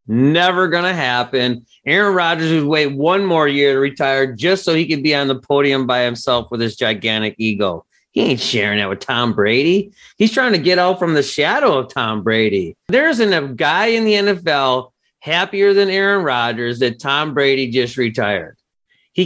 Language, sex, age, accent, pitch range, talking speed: English, male, 30-49, American, 125-180 Hz, 190 wpm